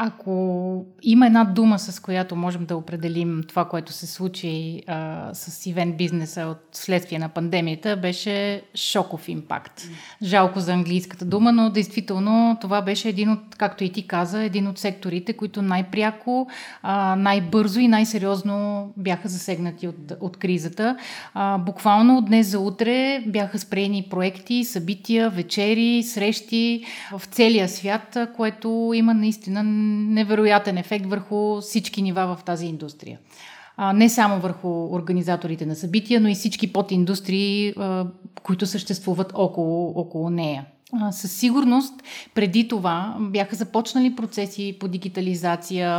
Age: 30-49